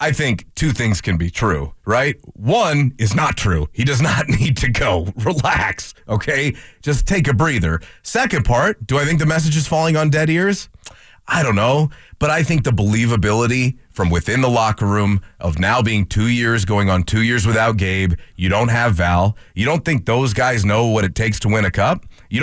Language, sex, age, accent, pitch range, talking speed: English, male, 30-49, American, 105-145 Hz, 210 wpm